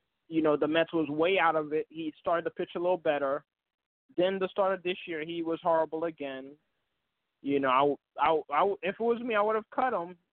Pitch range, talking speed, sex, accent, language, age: 160-215 Hz, 230 wpm, male, American, English, 20-39